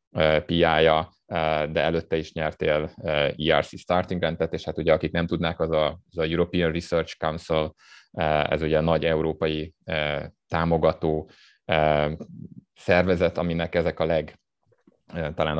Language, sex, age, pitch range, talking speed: Hungarian, male, 30-49, 75-85 Hz, 125 wpm